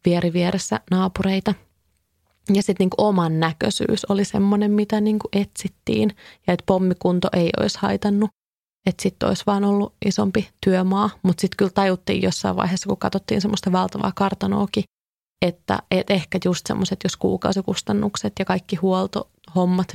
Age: 30-49